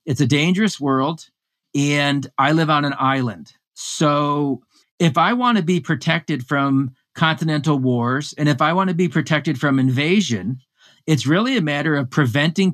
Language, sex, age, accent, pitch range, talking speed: English, male, 40-59, American, 130-160 Hz, 165 wpm